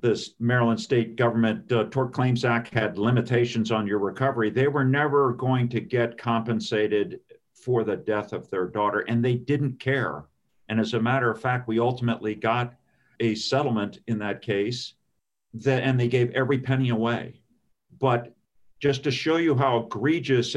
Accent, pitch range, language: American, 115-135 Hz, English